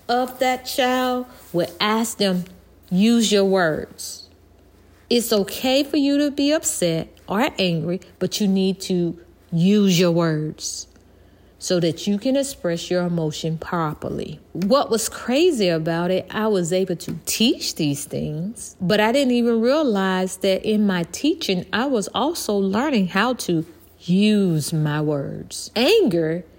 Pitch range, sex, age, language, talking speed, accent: 165-240 Hz, female, 40-59, English, 145 wpm, American